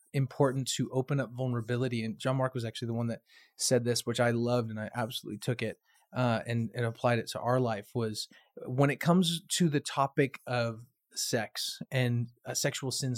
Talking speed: 200 wpm